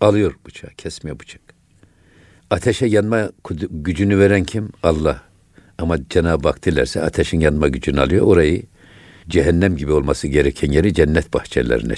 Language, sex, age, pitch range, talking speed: Turkish, male, 60-79, 85-105 Hz, 130 wpm